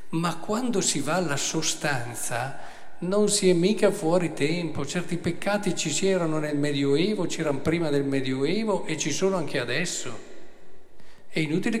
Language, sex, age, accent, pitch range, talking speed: Italian, male, 50-69, native, 125-165 Hz, 145 wpm